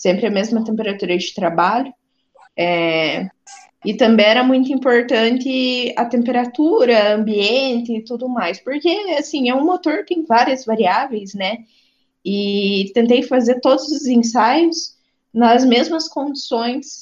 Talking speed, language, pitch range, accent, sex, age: 125 wpm, Portuguese, 200-255 Hz, Brazilian, female, 20-39